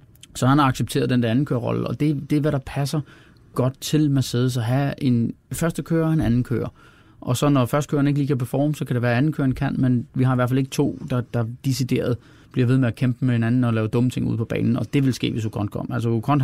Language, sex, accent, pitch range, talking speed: Danish, male, native, 120-140 Hz, 280 wpm